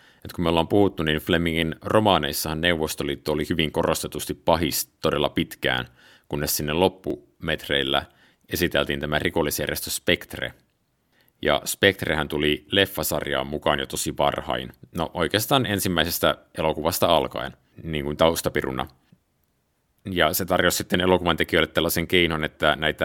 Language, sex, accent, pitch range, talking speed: Finnish, male, native, 75-90 Hz, 120 wpm